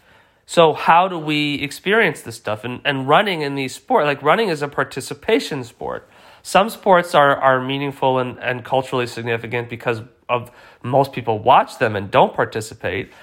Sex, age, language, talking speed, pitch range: male, 30-49, English, 170 wpm, 115-145 Hz